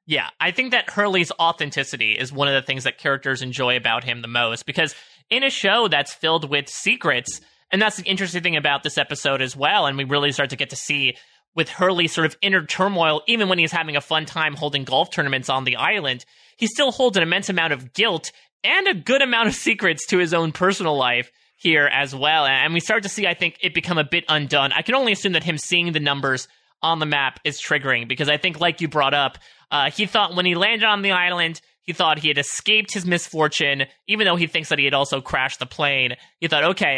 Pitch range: 140-180 Hz